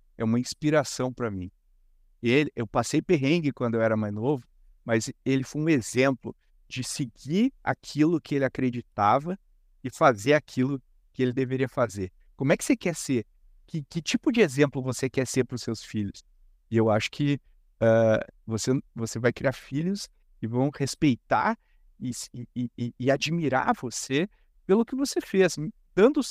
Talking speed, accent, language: 170 wpm, Brazilian, Portuguese